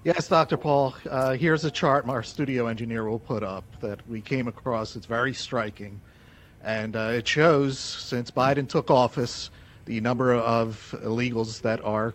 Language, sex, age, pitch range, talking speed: English, male, 50-69, 120-170 Hz, 170 wpm